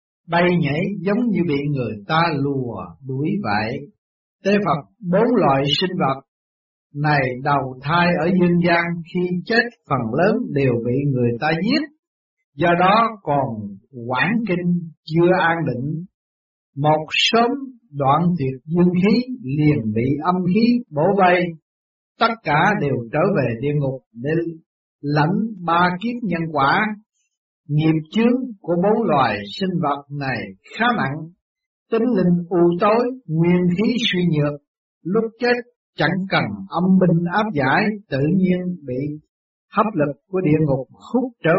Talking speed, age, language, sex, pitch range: 145 wpm, 60-79, Vietnamese, male, 140-205 Hz